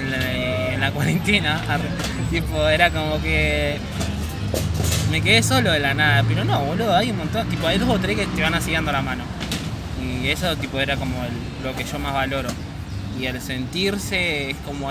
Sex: male